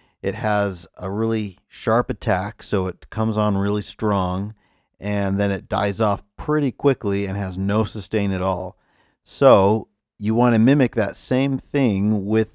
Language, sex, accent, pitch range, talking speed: English, male, American, 90-110 Hz, 165 wpm